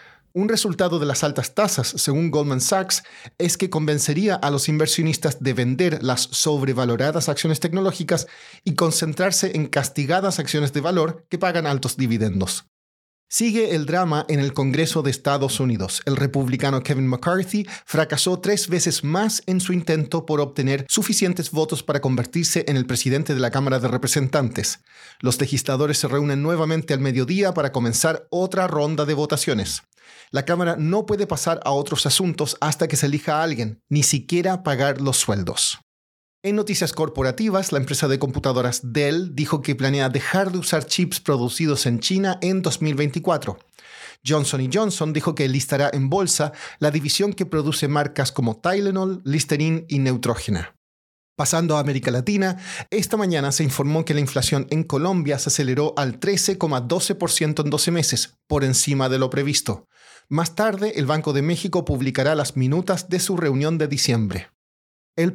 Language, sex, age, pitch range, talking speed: Spanish, male, 40-59, 135-175 Hz, 160 wpm